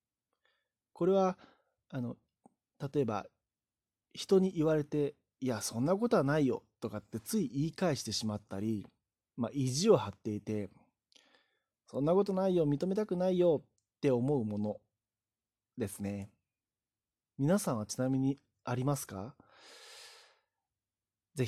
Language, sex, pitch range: Japanese, male, 105-155 Hz